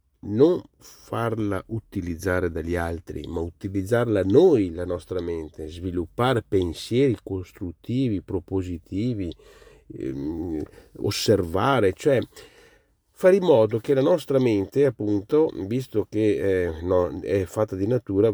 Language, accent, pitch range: Italian, native, 95-130 Hz